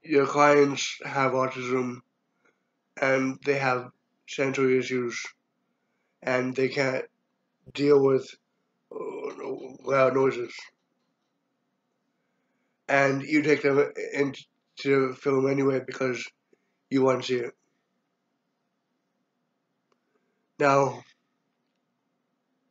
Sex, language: male, English